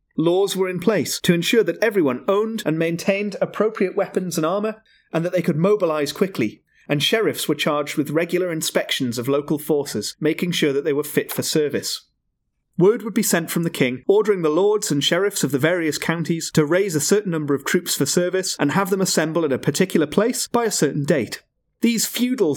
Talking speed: 205 wpm